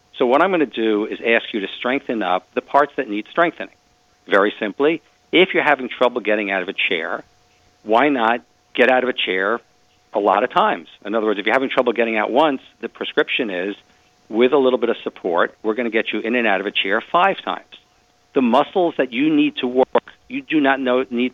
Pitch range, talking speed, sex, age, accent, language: 105-135 Hz, 235 wpm, male, 50-69, American, English